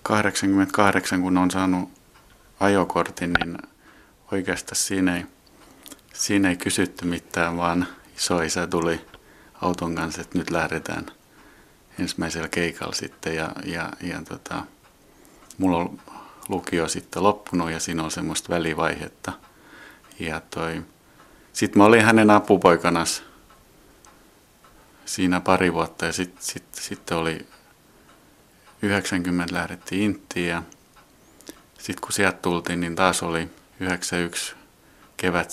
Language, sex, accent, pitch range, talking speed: Finnish, male, native, 85-95 Hz, 105 wpm